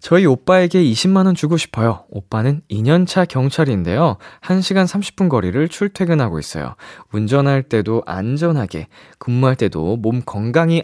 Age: 20-39